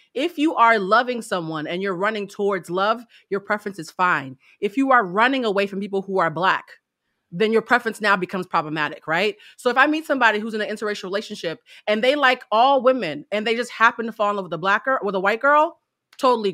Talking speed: 230 wpm